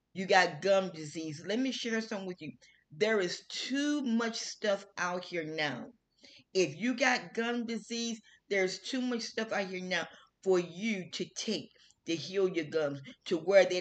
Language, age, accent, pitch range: English, 40-59, American, 160-230 Hz